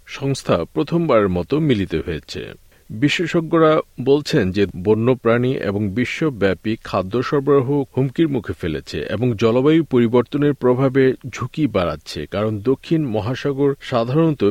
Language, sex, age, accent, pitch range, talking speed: Bengali, male, 50-69, native, 110-150 Hz, 110 wpm